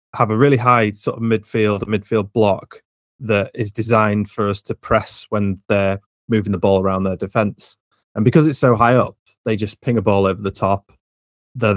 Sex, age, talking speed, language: male, 30-49, 205 wpm, English